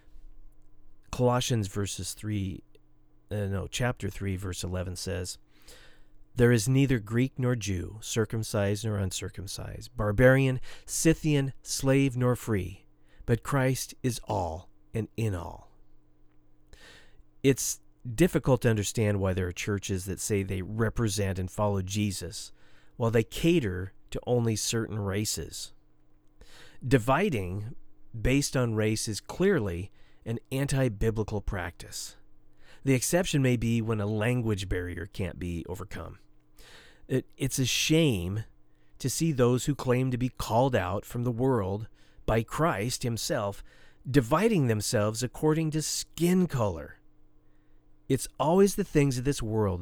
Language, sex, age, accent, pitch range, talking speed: English, male, 40-59, American, 90-125 Hz, 125 wpm